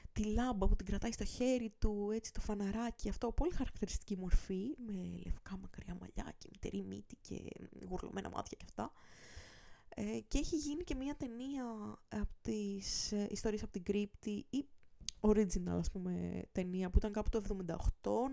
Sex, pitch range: female, 190-250 Hz